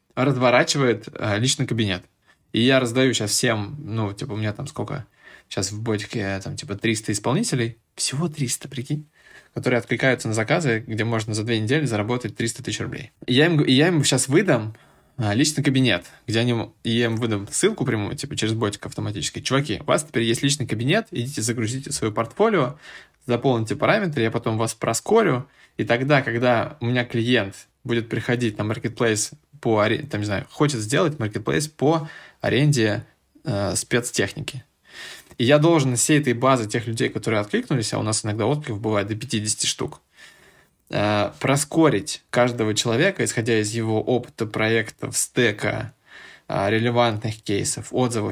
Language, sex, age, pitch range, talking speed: Russian, male, 20-39, 110-140 Hz, 160 wpm